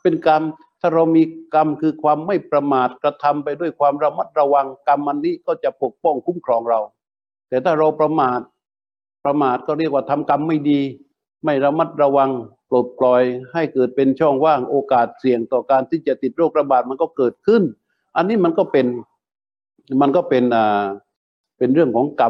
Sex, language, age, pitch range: male, Thai, 60-79, 130-155 Hz